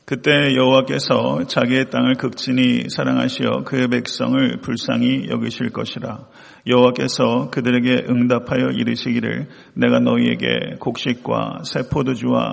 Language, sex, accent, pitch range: Korean, male, native, 120-130 Hz